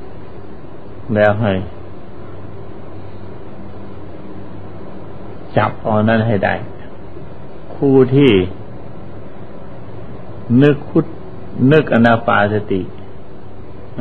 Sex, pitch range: male, 95-115 Hz